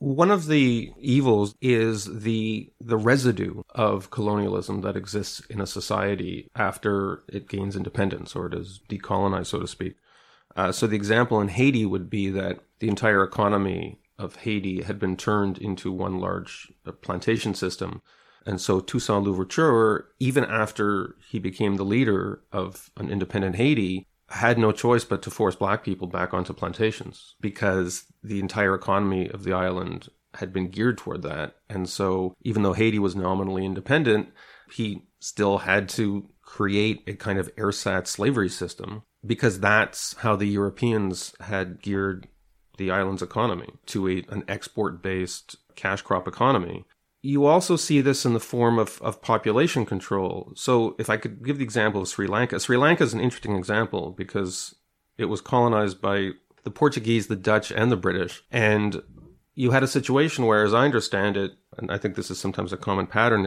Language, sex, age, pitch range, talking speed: English, male, 30-49, 95-115 Hz, 170 wpm